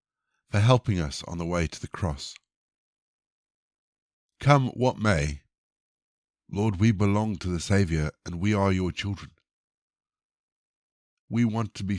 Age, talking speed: 50-69, 135 wpm